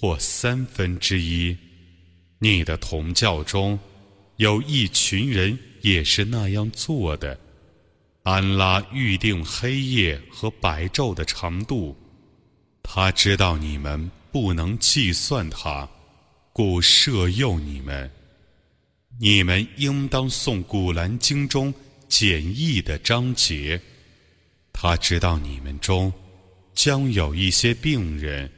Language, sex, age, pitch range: Arabic, male, 30-49, 80-110 Hz